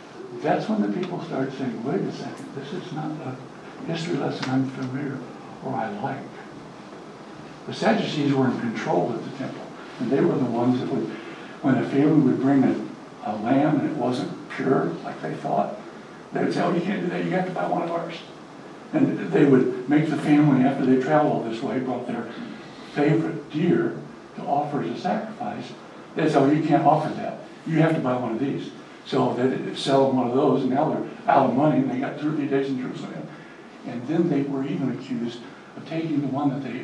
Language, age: English, 60-79